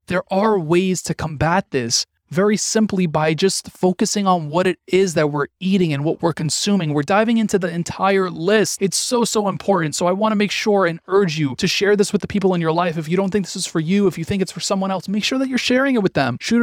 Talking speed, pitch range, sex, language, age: 265 wpm, 165-210 Hz, male, English, 30-49